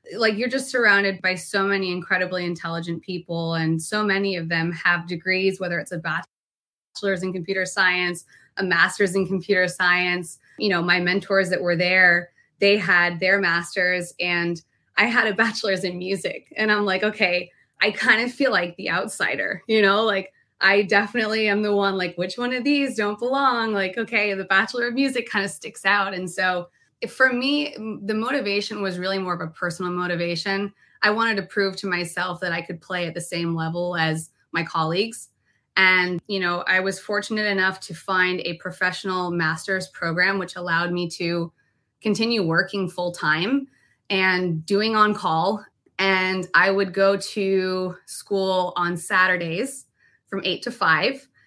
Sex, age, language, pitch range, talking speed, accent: female, 20-39, English, 175-205 Hz, 175 wpm, American